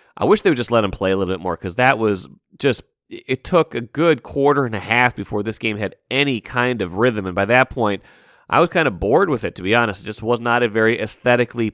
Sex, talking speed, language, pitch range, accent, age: male, 270 wpm, English, 110-125 Hz, American, 30-49